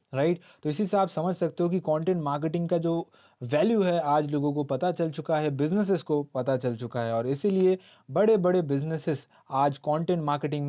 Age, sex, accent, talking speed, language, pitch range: 20-39, male, native, 200 wpm, Hindi, 140-185 Hz